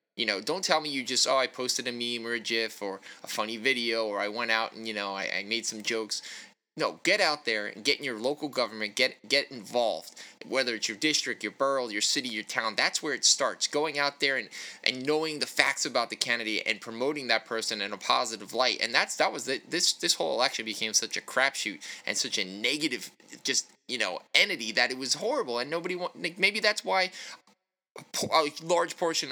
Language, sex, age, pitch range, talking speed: English, male, 20-39, 115-145 Hz, 230 wpm